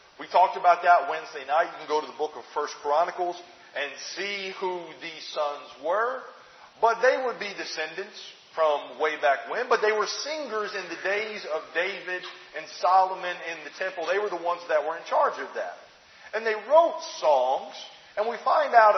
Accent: American